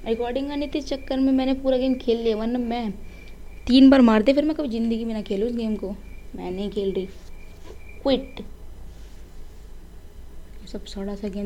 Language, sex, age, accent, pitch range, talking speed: Hindi, female, 20-39, native, 195-255 Hz, 190 wpm